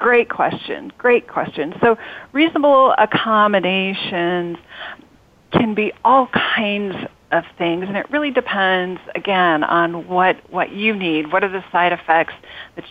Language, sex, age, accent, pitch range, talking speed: English, female, 40-59, American, 175-210 Hz, 135 wpm